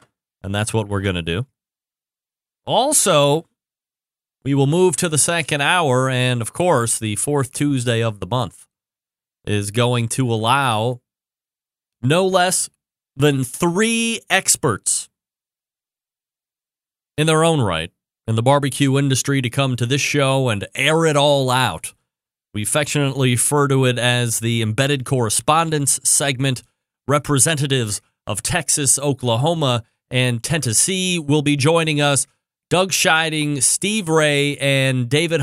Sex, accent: male, American